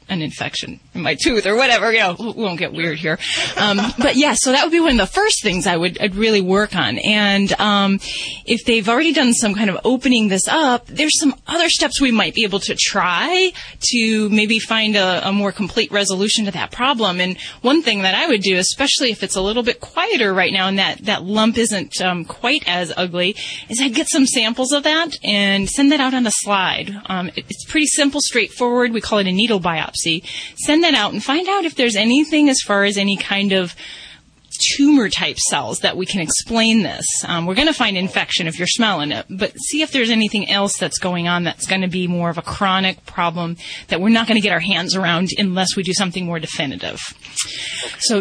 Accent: American